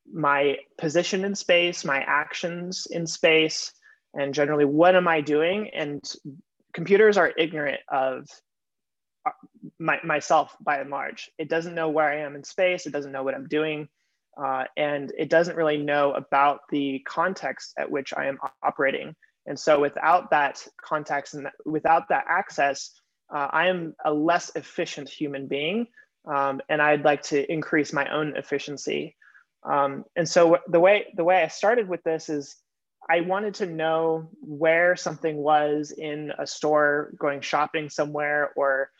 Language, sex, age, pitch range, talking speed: English, male, 20-39, 145-175 Hz, 160 wpm